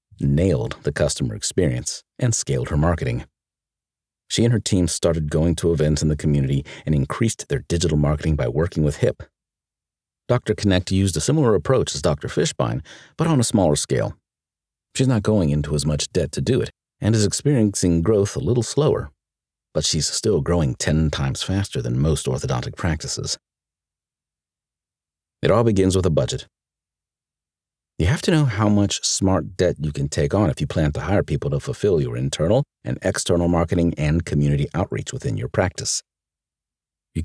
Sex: male